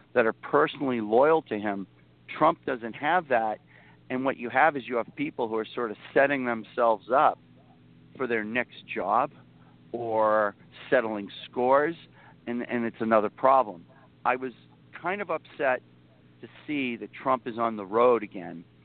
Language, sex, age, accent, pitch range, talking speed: English, male, 50-69, American, 100-130 Hz, 160 wpm